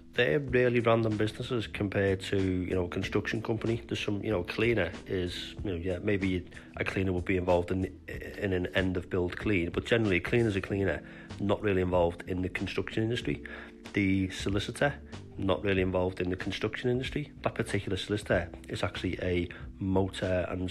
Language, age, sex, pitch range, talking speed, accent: English, 30-49, male, 90-105 Hz, 185 wpm, British